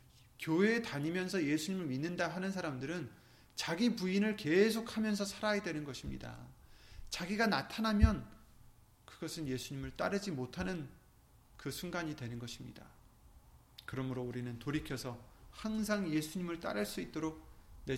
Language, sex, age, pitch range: Korean, male, 30-49, 115-165 Hz